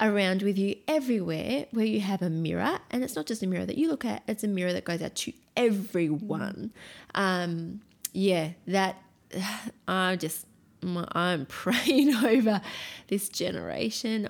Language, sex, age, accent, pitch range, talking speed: English, female, 20-39, Australian, 175-220 Hz, 160 wpm